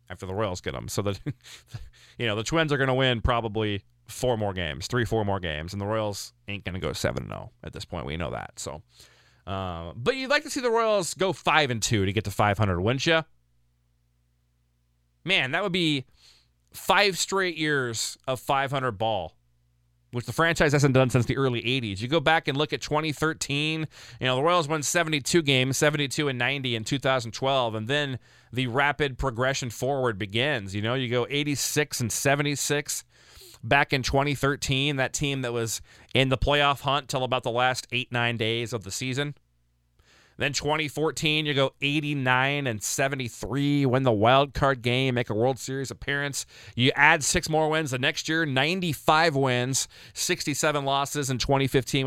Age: 20-39